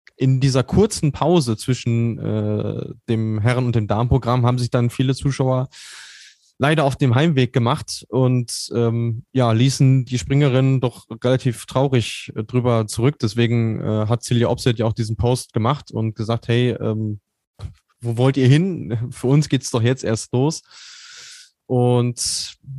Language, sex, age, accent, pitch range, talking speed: German, male, 20-39, German, 115-135 Hz, 160 wpm